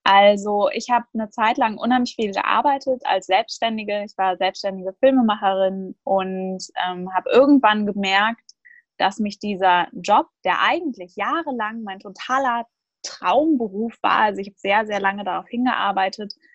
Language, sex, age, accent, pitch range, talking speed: German, female, 20-39, German, 200-255 Hz, 140 wpm